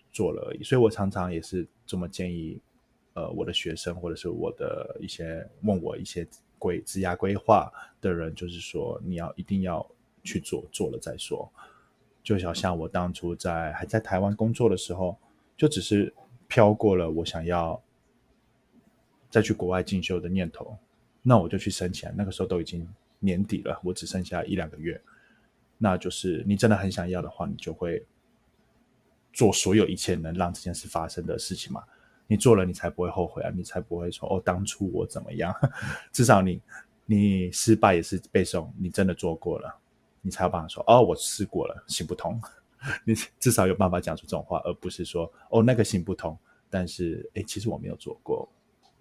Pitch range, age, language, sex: 90-105 Hz, 20-39, Chinese, male